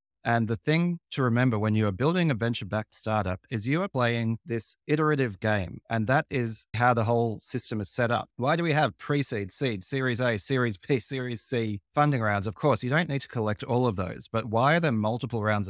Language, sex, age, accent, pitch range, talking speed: English, male, 30-49, Australian, 105-140 Hz, 230 wpm